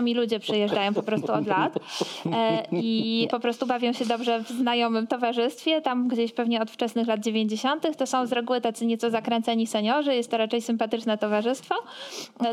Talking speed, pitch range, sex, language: 175 wpm, 215-250 Hz, female, Polish